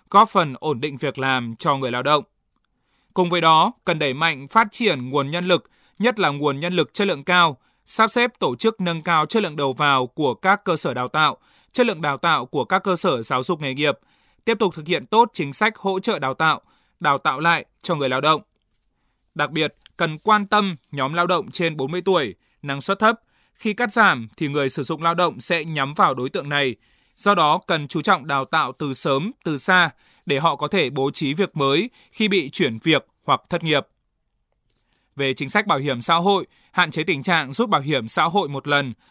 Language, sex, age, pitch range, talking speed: Vietnamese, male, 20-39, 140-195 Hz, 225 wpm